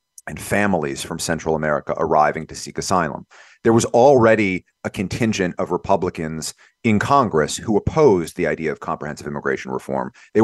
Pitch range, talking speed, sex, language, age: 90-115 Hz, 155 wpm, male, English, 30-49